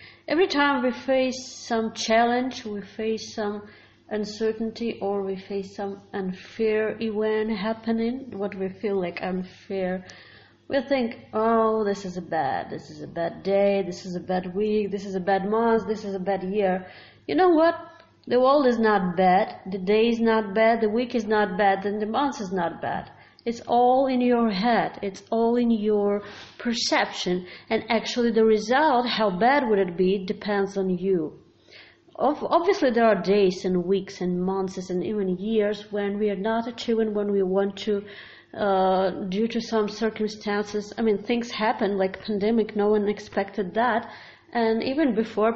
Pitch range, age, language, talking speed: 195-230 Hz, 40-59, English, 175 wpm